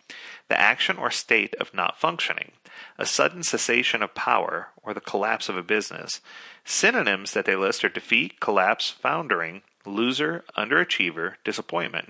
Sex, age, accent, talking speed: male, 40-59, American, 145 wpm